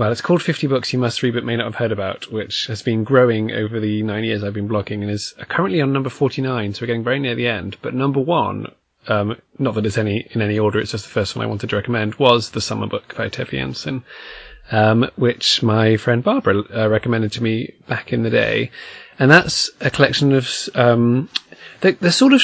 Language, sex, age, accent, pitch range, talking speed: English, male, 20-39, British, 110-130 Hz, 235 wpm